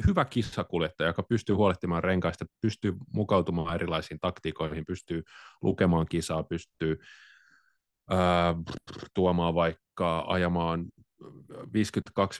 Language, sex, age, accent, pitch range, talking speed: Finnish, male, 30-49, native, 85-105 Hz, 90 wpm